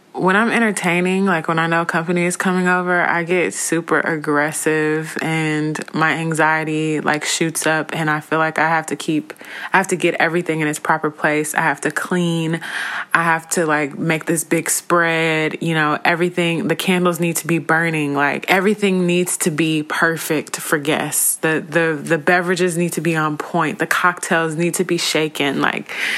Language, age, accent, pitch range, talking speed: English, 20-39, American, 155-180 Hz, 190 wpm